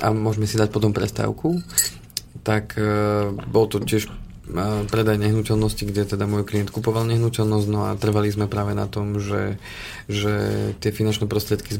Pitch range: 105-110 Hz